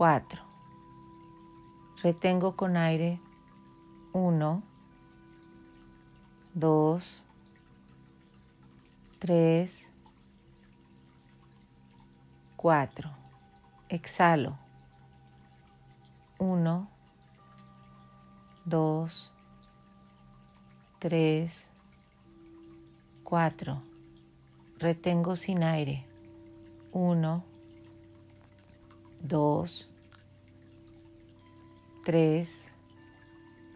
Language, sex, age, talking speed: Spanish, female, 40-59, 35 wpm